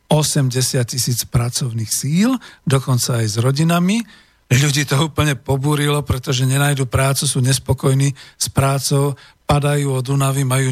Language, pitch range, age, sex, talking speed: Slovak, 130-155 Hz, 50-69, male, 130 wpm